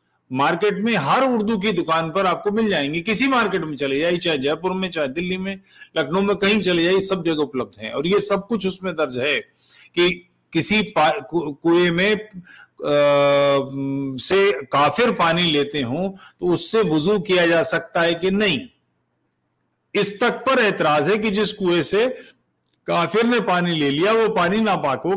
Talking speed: 180 wpm